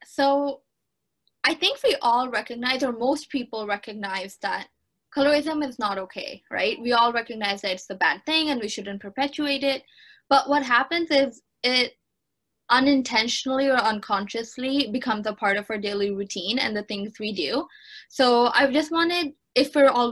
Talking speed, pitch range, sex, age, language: 165 wpm, 215-275 Hz, female, 10-29, English